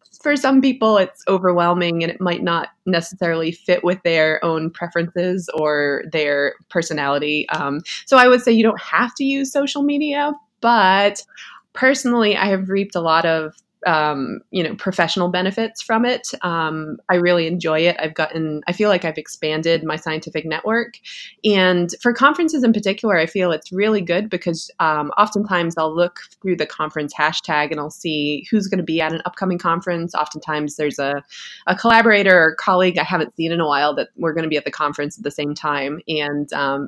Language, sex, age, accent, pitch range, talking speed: English, female, 20-39, American, 155-205 Hz, 190 wpm